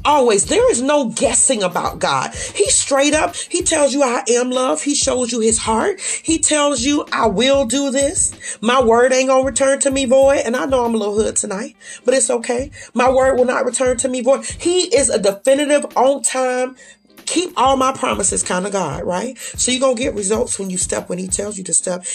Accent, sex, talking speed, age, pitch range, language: American, female, 230 wpm, 30-49, 180-255 Hz, English